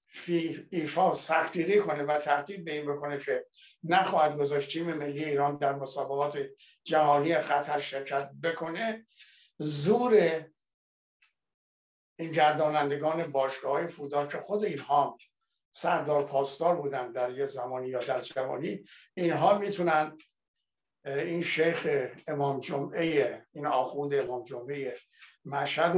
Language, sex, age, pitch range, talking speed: Persian, male, 60-79, 140-165 Hz, 110 wpm